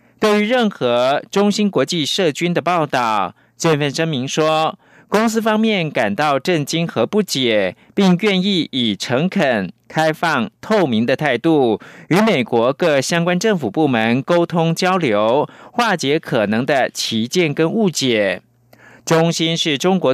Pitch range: 130-185 Hz